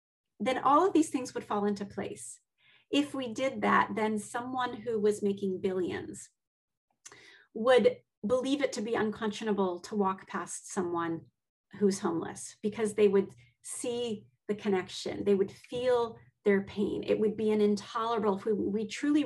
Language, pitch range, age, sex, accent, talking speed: English, 195-245 Hz, 30-49, female, American, 160 wpm